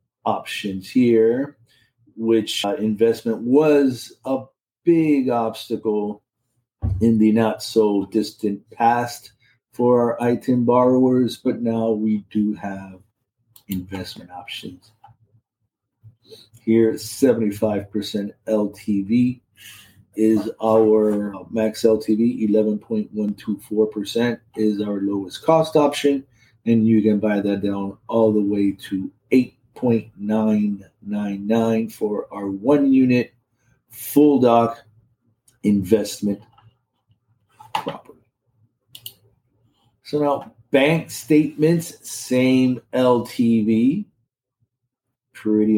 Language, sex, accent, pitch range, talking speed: English, male, American, 105-125 Hz, 90 wpm